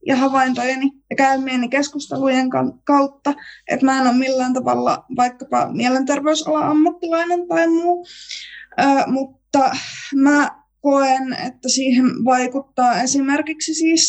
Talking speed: 105 wpm